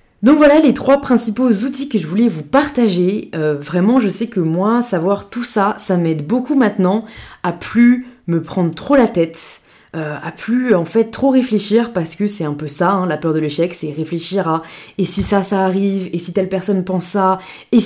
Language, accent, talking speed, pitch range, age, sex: French, French, 215 wpm, 180-230 Hz, 20-39, female